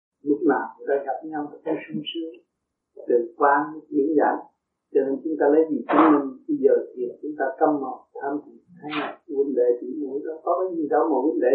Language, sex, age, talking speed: Vietnamese, male, 50-69, 225 wpm